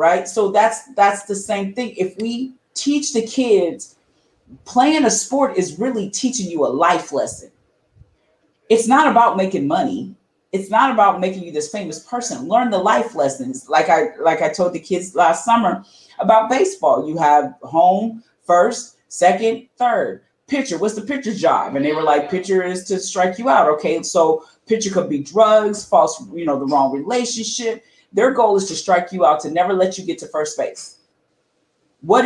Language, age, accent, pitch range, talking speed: English, 30-49, American, 175-235 Hz, 185 wpm